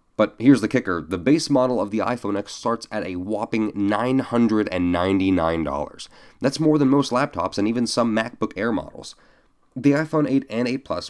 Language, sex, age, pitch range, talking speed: English, male, 30-49, 95-130 Hz, 180 wpm